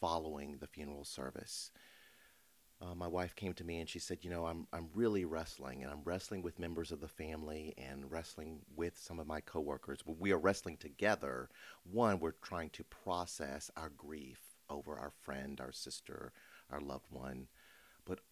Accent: American